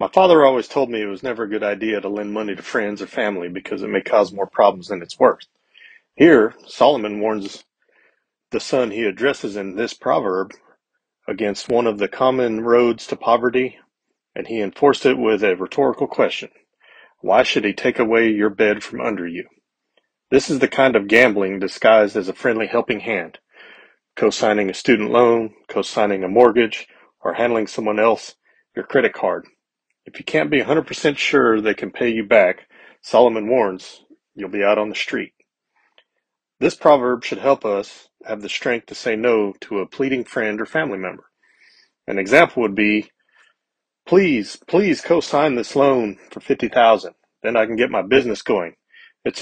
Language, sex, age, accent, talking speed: English, male, 40-59, American, 175 wpm